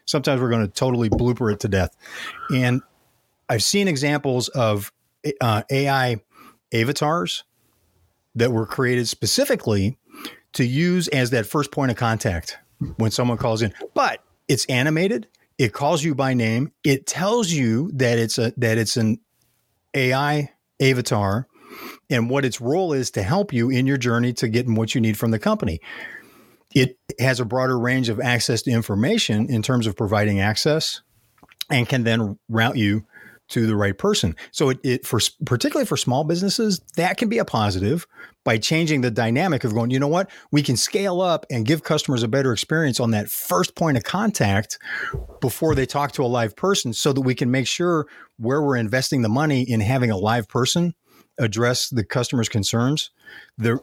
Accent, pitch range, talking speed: American, 115-145 Hz, 180 wpm